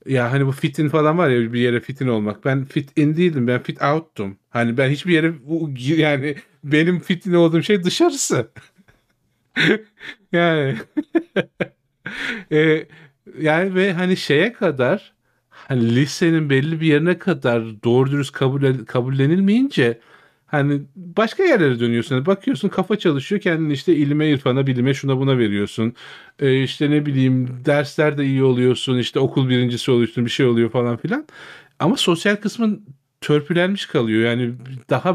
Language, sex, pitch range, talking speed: Turkish, male, 125-165 Hz, 140 wpm